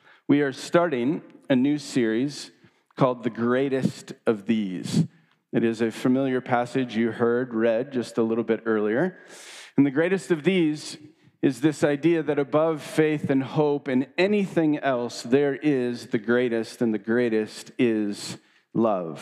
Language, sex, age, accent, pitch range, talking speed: English, male, 40-59, American, 115-145 Hz, 155 wpm